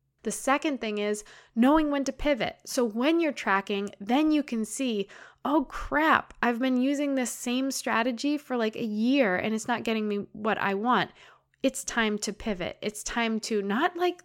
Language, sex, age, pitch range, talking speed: English, female, 20-39, 200-255 Hz, 190 wpm